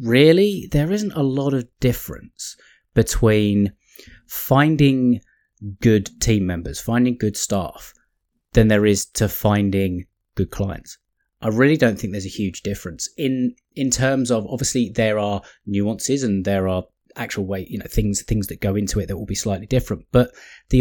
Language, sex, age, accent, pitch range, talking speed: English, male, 30-49, British, 100-120 Hz, 165 wpm